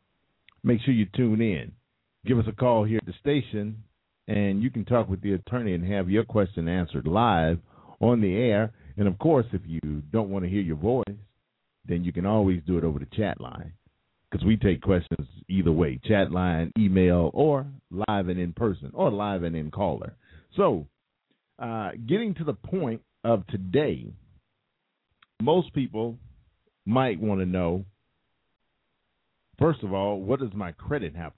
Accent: American